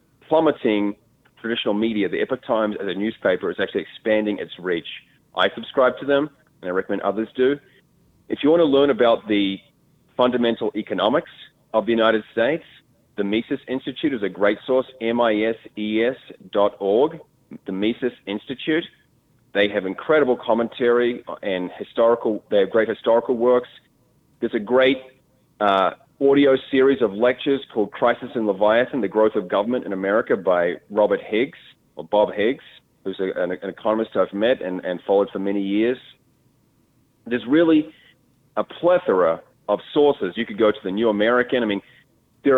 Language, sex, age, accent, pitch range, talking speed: English, male, 30-49, Australian, 105-135 Hz, 160 wpm